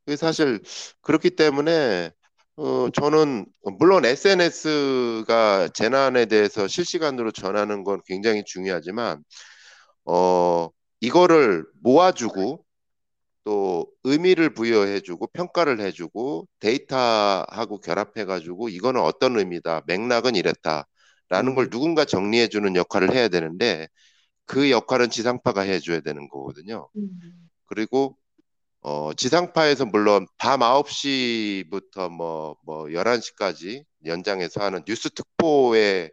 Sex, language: male, Korean